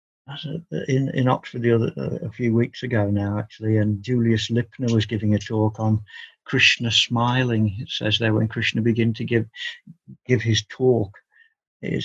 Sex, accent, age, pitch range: male, British, 60-79, 115-140 Hz